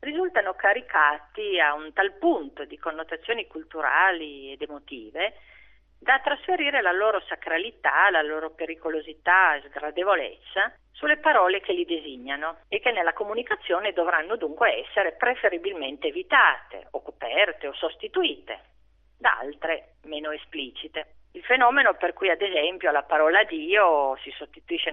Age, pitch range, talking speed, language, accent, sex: 40-59, 150-240 Hz, 130 wpm, Italian, native, female